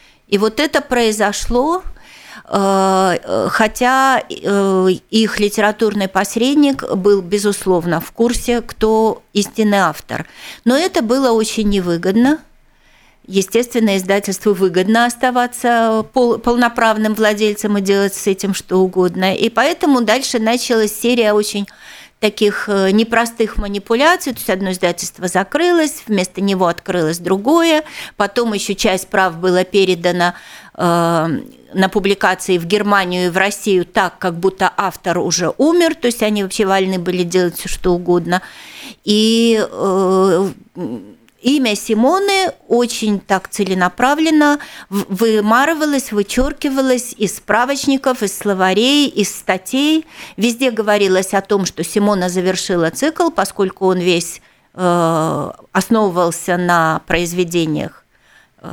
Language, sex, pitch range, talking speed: Russian, female, 190-240 Hz, 110 wpm